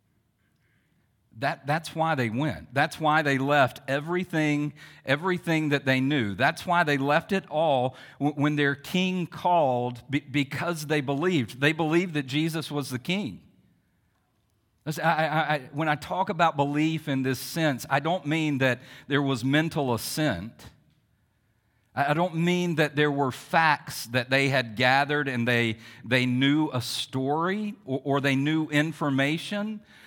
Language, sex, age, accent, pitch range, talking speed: English, male, 50-69, American, 130-165 Hz, 160 wpm